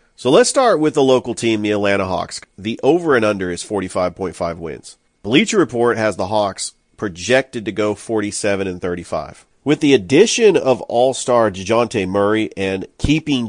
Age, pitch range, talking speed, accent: 40-59, 100-120 Hz, 160 wpm, American